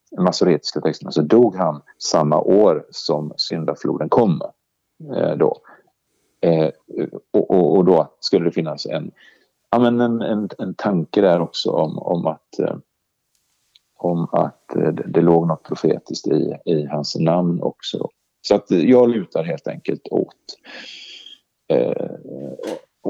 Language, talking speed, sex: Swedish, 145 wpm, male